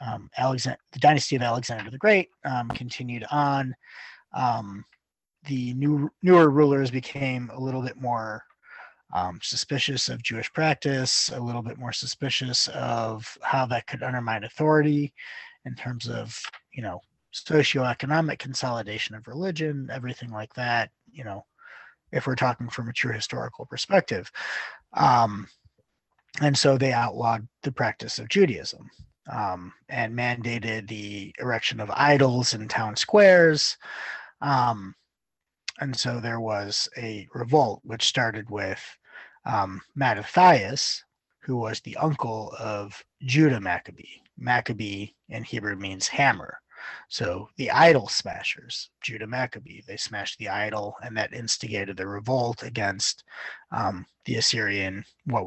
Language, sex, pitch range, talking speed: English, male, 110-135 Hz, 130 wpm